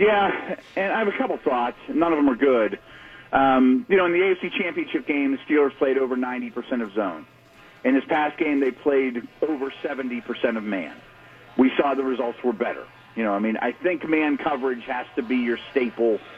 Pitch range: 120-180 Hz